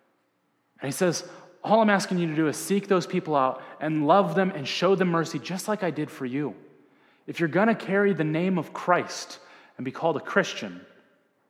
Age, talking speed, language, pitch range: 30-49, 215 wpm, English, 150-195 Hz